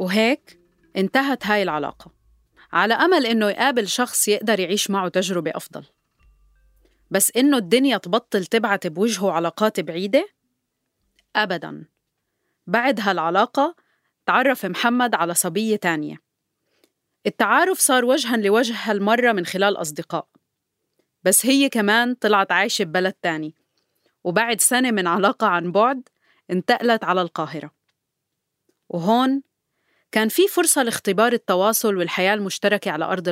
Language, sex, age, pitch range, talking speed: Arabic, female, 30-49, 175-235 Hz, 115 wpm